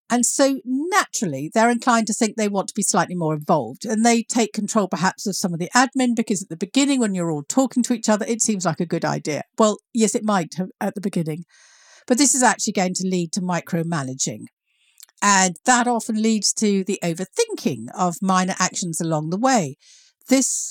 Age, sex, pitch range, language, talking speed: 50-69, female, 175-245 Hz, English, 205 wpm